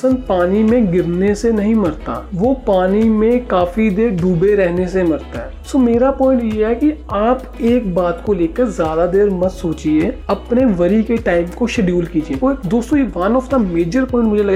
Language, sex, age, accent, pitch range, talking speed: Hindi, male, 40-59, native, 185-235 Hz, 75 wpm